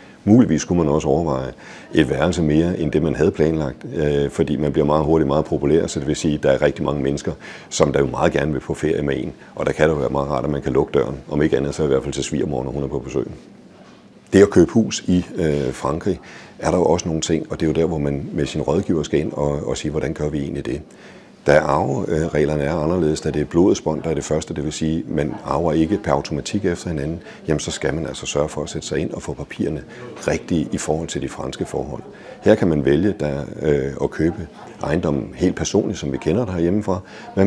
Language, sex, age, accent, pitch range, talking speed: Danish, male, 60-79, native, 70-85 Hz, 255 wpm